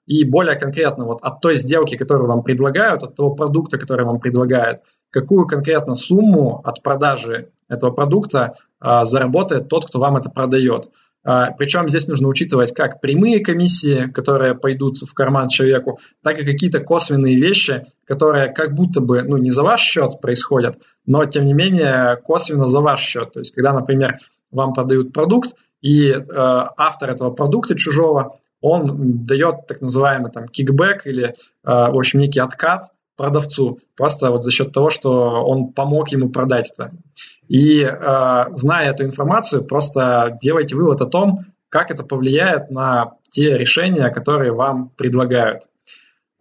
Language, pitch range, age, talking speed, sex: Russian, 130-150 Hz, 20-39, 155 wpm, male